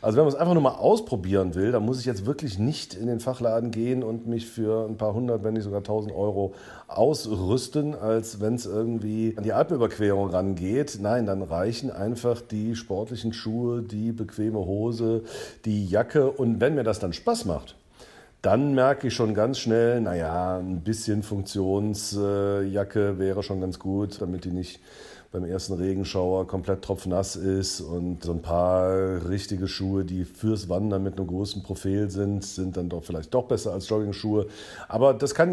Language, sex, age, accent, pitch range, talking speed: German, male, 50-69, German, 95-115 Hz, 180 wpm